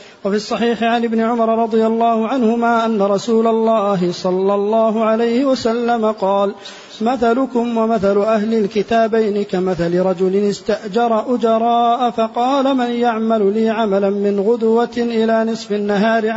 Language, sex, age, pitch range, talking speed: Arabic, male, 40-59, 200-235 Hz, 125 wpm